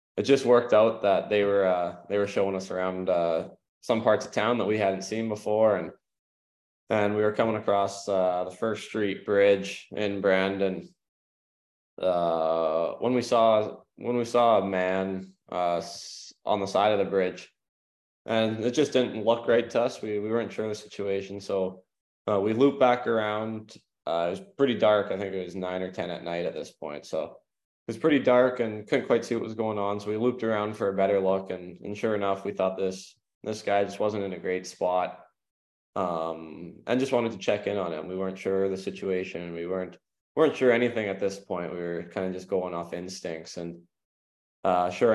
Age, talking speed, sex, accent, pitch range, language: 20-39, 215 wpm, male, American, 90-105 Hz, English